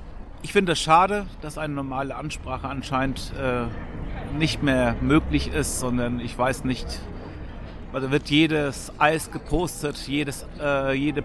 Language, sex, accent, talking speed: German, male, German, 140 wpm